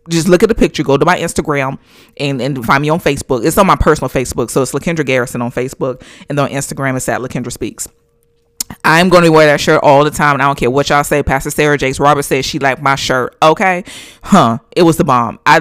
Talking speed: 250 wpm